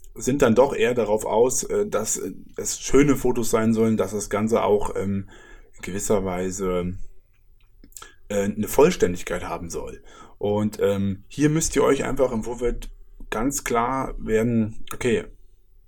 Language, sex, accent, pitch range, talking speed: German, male, German, 105-130 Hz, 130 wpm